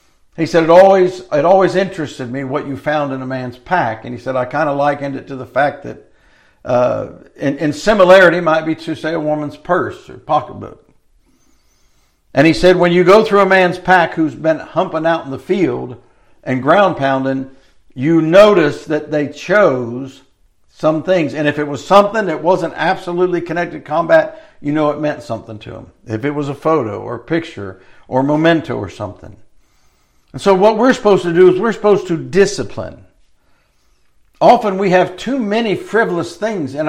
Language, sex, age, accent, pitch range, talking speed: English, male, 60-79, American, 145-195 Hz, 190 wpm